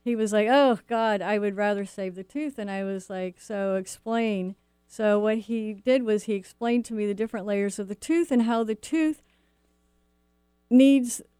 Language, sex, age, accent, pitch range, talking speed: English, female, 50-69, American, 190-225 Hz, 195 wpm